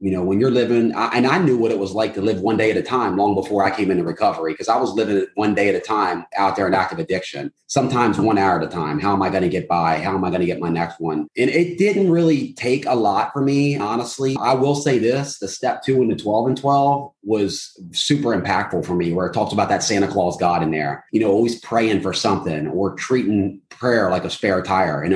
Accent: American